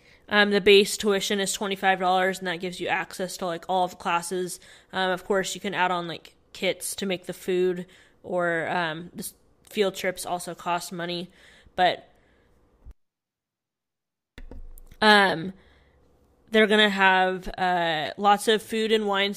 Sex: female